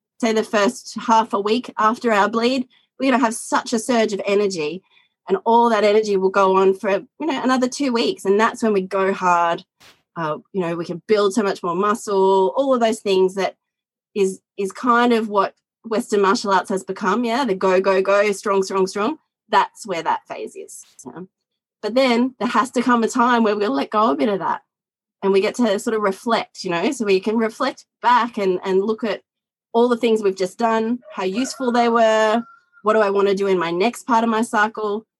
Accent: Australian